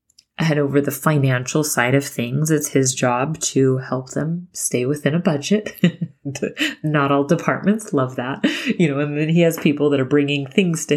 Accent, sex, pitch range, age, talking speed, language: American, female, 135-170 Hz, 30-49, 185 wpm, English